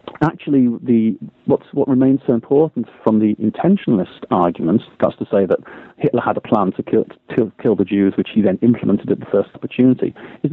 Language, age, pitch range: English, 40-59, 105-135 Hz